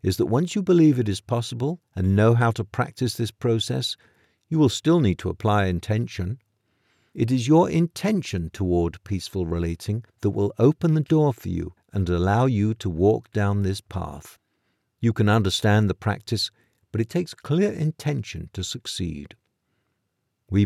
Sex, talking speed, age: male, 165 wpm, 50-69